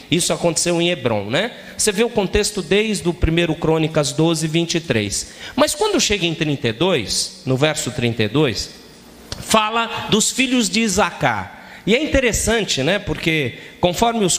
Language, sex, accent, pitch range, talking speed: Portuguese, male, Brazilian, 140-210 Hz, 145 wpm